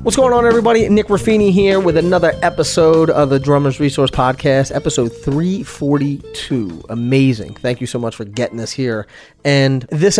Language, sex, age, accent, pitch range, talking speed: English, male, 30-49, American, 125-155 Hz, 165 wpm